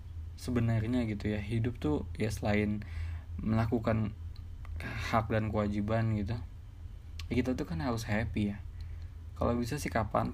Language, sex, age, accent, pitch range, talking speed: Indonesian, male, 20-39, native, 85-115 Hz, 130 wpm